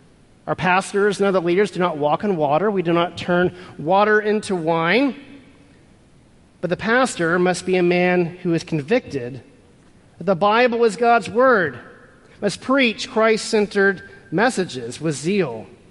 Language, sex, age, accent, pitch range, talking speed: English, male, 40-59, American, 170-220 Hz, 145 wpm